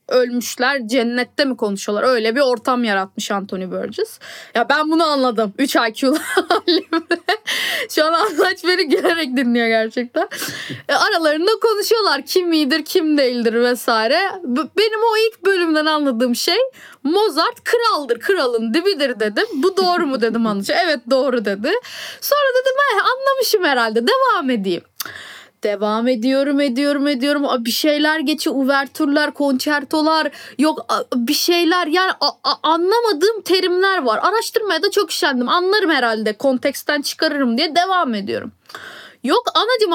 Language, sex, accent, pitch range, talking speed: Turkish, female, native, 265-370 Hz, 135 wpm